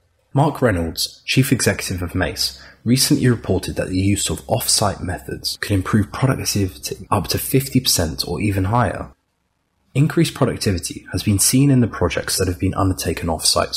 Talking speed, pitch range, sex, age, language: 155 wpm, 90-115 Hz, male, 20-39, English